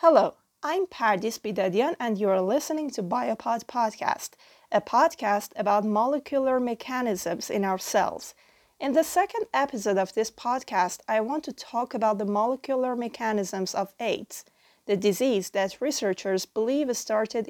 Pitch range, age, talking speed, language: 210-255 Hz, 30-49, 140 wpm, Persian